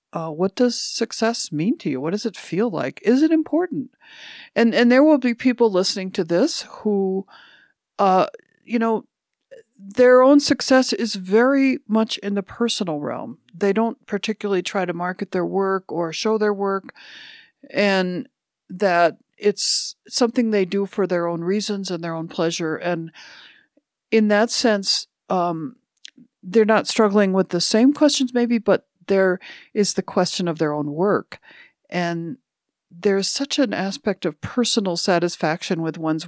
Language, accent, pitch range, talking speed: English, American, 170-230 Hz, 160 wpm